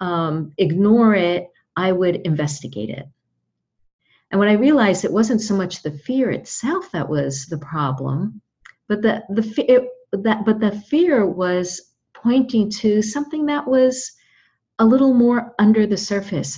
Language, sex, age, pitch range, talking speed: English, female, 50-69, 155-220 Hz, 150 wpm